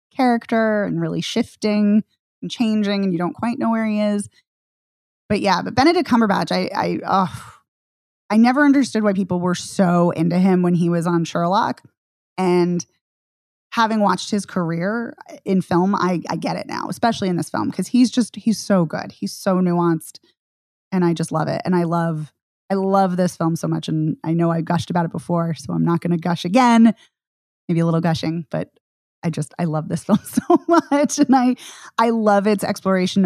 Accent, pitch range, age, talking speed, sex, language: American, 165-205 Hz, 20-39, 195 wpm, female, English